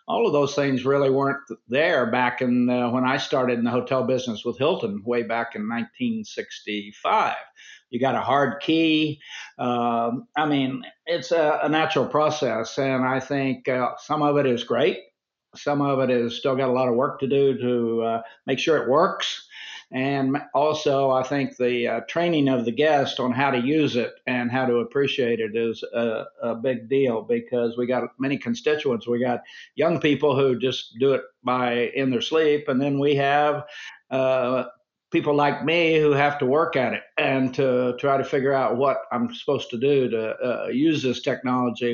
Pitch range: 125-145 Hz